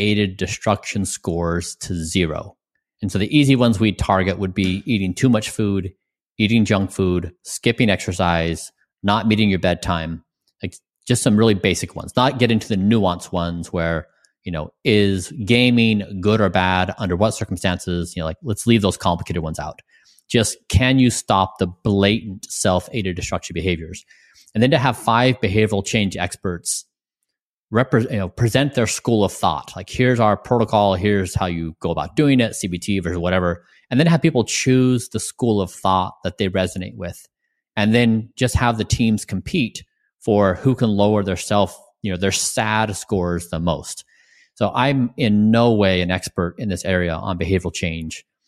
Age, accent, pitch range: 30-49, American, 90-115 Hz